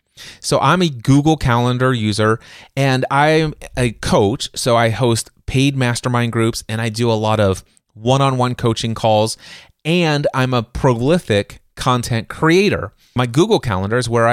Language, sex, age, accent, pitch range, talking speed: English, male, 30-49, American, 115-145 Hz, 150 wpm